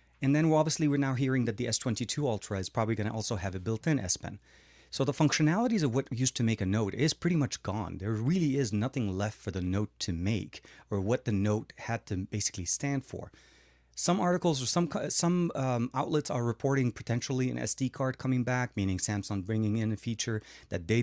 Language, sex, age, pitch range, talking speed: English, male, 30-49, 105-130 Hz, 225 wpm